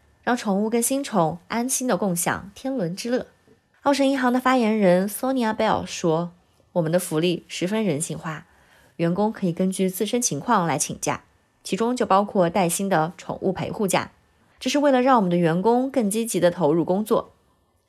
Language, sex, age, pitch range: Chinese, female, 20-39, 170-230 Hz